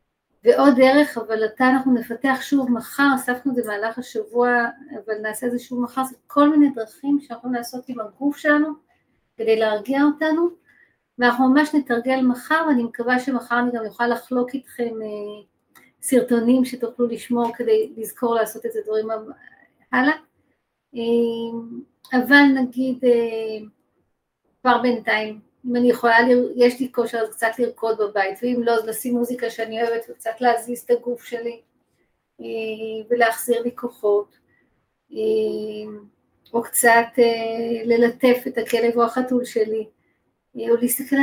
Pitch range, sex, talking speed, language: 230-260 Hz, female, 135 wpm, Hebrew